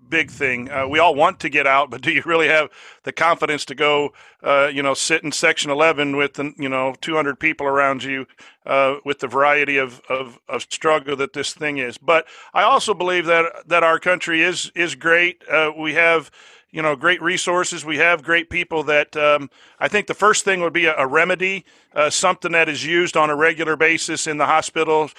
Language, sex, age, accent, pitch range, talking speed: English, male, 50-69, American, 145-170 Hz, 215 wpm